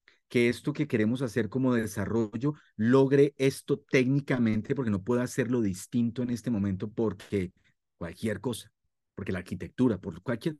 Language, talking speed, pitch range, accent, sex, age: Spanish, 145 wpm, 110-150 Hz, Colombian, male, 40-59